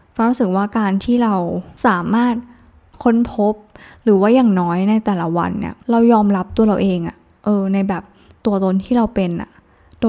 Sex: female